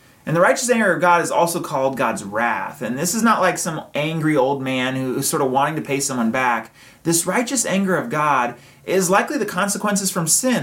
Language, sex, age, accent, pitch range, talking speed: English, male, 30-49, American, 150-200 Hz, 225 wpm